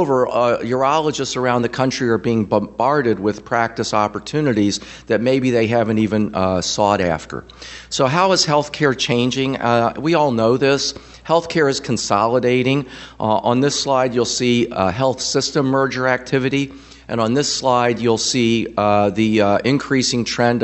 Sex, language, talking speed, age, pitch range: male, English, 160 wpm, 50-69, 110-130 Hz